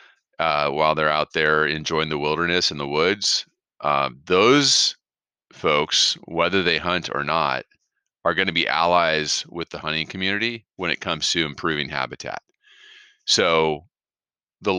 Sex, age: male, 30-49